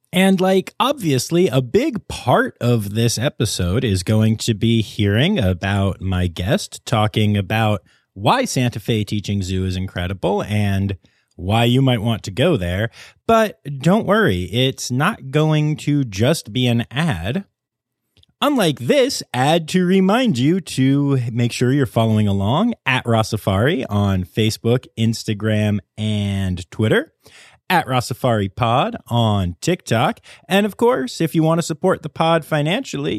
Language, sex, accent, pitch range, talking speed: English, male, American, 105-160 Hz, 145 wpm